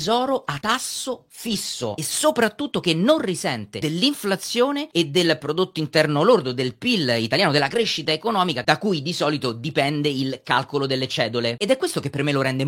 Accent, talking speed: native, 180 wpm